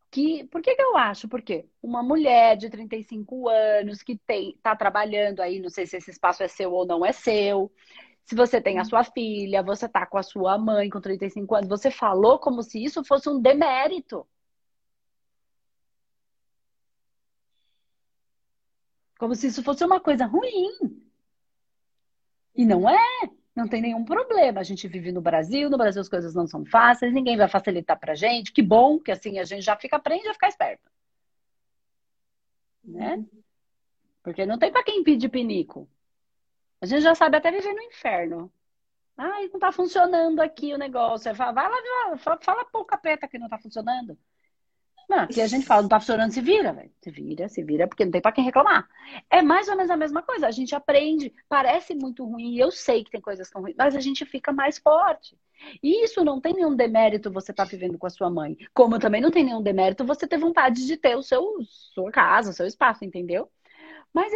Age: 30-49